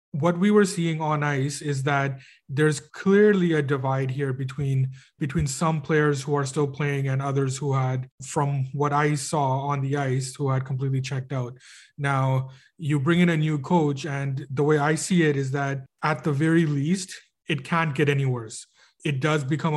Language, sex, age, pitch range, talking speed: English, male, 30-49, 135-155 Hz, 195 wpm